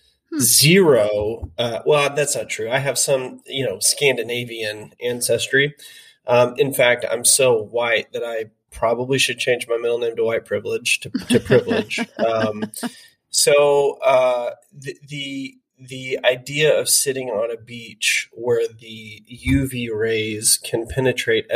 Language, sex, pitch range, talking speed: English, male, 115-145 Hz, 140 wpm